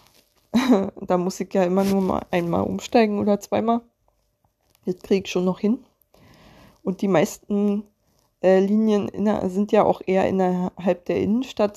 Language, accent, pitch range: German, German, 180-210 Hz